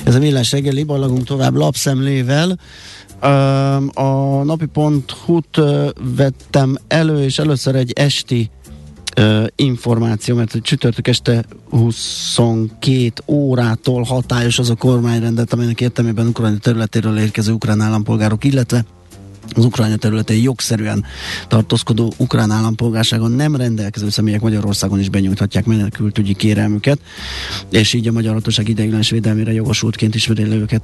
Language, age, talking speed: Hungarian, 30-49, 110 wpm